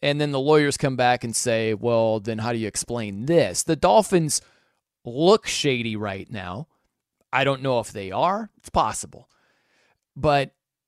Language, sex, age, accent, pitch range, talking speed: English, male, 30-49, American, 130-180 Hz, 165 wpm